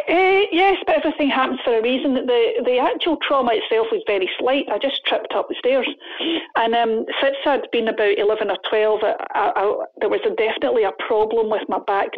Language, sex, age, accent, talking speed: English, female, 40-59, British, 210 wpm